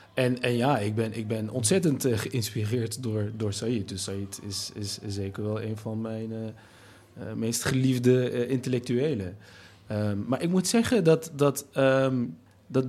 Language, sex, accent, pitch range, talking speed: Dutch, male, Dutch, 105-135 Hz, 145 wpm